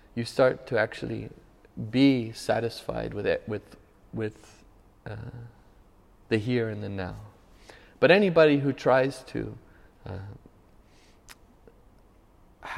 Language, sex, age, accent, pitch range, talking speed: English, male, 30-49, American, 105-140 Hz, 105 wpm